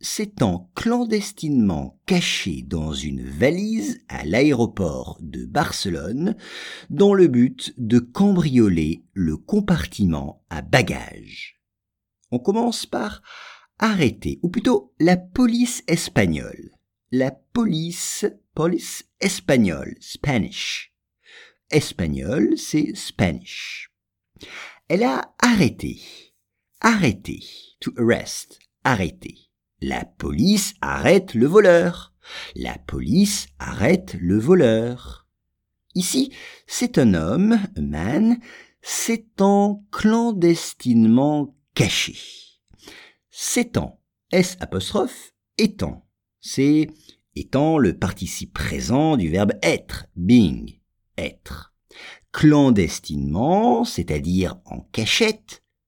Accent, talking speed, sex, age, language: French, 85 wpm, male, 50-69, English